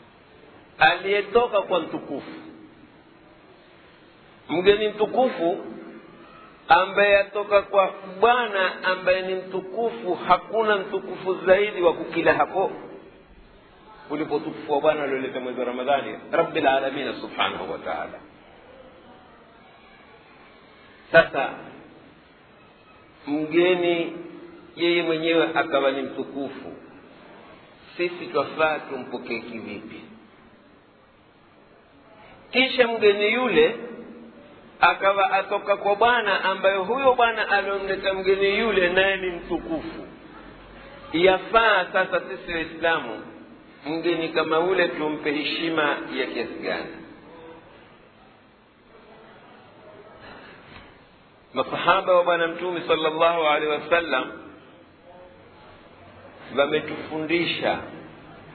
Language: Swahili